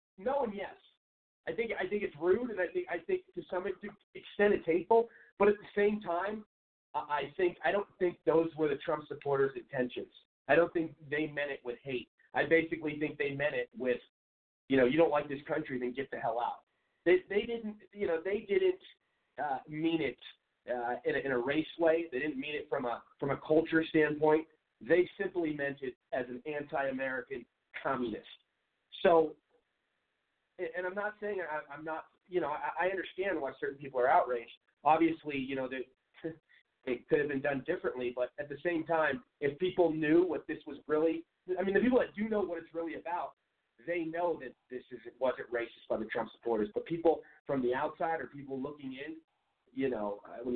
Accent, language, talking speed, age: American, English, 200 wpm, 40-59